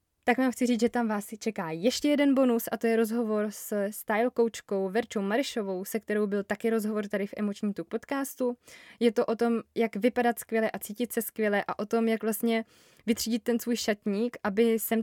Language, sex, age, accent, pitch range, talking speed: Czech, female, 20-39, native, 205-230 Hz, 210 wpm